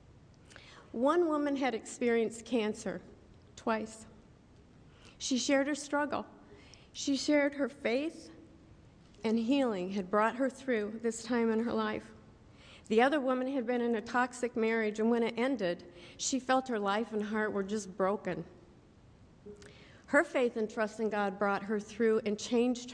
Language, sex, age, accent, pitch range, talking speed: English, female, 50-69, American, 205-250 Hz, 150 wpm